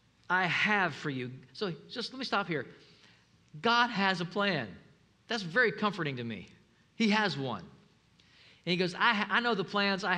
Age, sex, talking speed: 50-69, male, 190 wpm